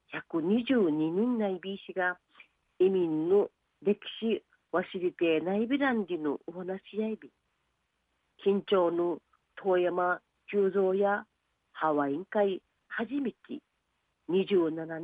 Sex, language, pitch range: female, Japanese, 180-235 Hz